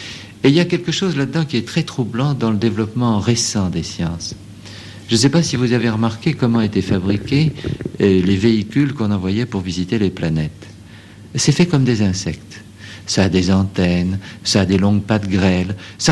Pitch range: 100-125 Hz